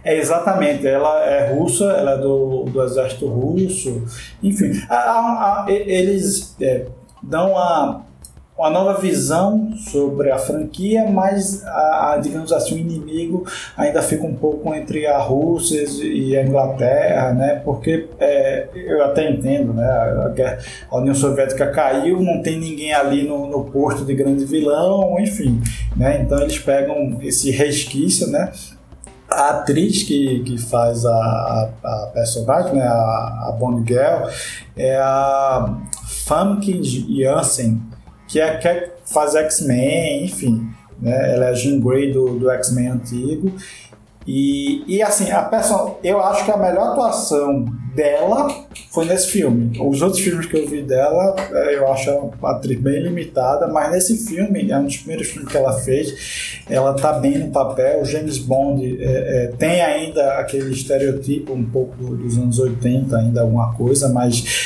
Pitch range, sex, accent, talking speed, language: 125-170 Hz, male, Brazilian, 155 wpm, Portuguese